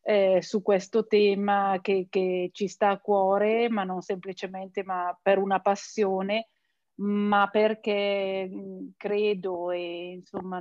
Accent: native